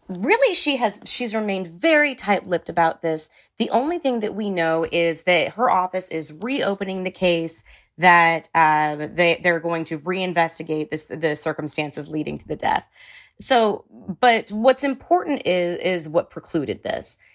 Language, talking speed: English, 165 wpm